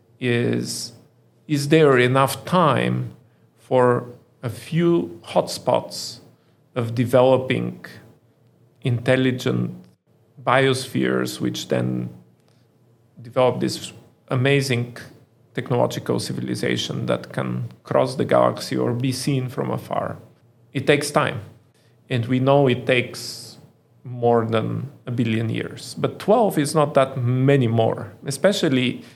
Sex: male